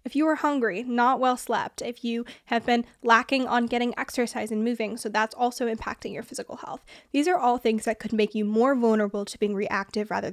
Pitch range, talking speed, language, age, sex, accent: 220-270 Hz, 220 wpm, English, 10-29, female, American